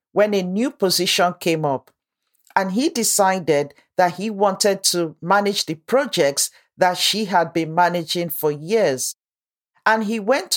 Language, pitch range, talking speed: English, 165-210 Hz, 150 wpm